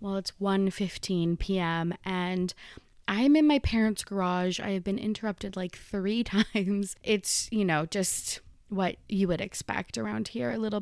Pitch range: 185-220 Hz